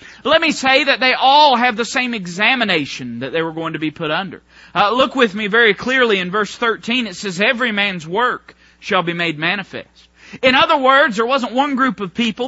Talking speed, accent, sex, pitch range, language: 215 wpm, American, male, 210-275 Hz, English